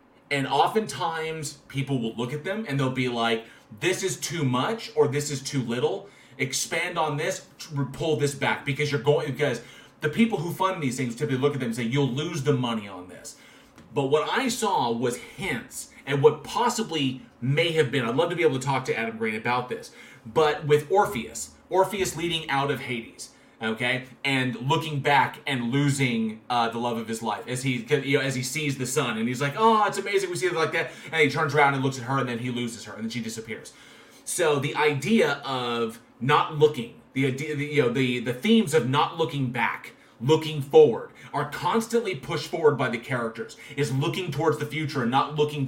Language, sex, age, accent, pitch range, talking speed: English, male, 30-49, American, 125-160 Hz, 215 wpm